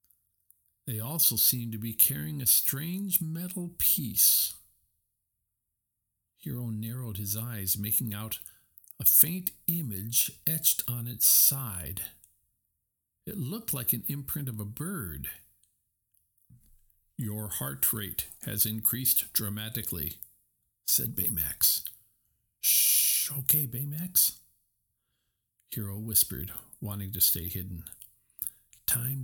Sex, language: male, English